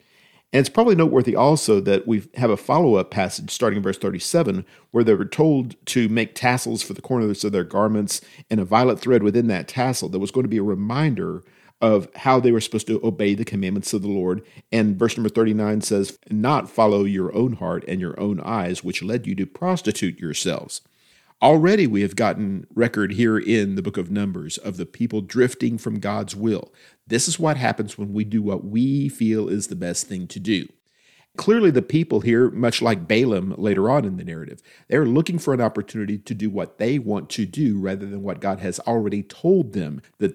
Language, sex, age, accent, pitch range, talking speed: English, male, 50-69, American, 100-125 Hz, 210 wpm